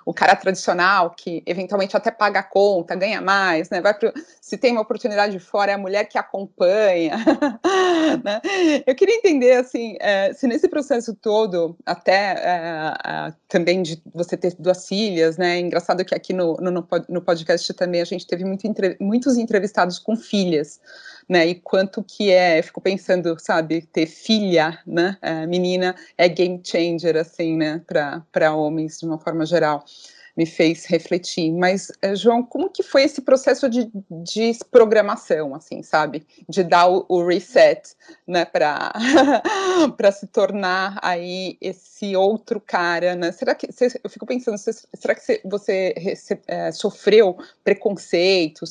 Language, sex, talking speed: Portuguese, female, 155 wpm